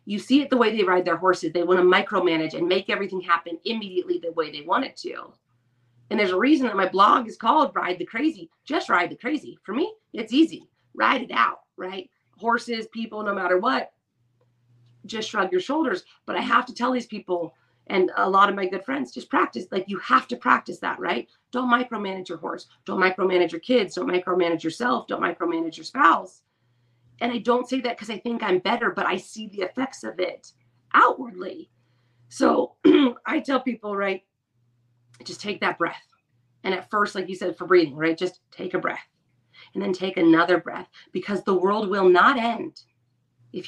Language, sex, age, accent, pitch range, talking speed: English, female, 30-49, American, 165-230 Hz, 200 wpm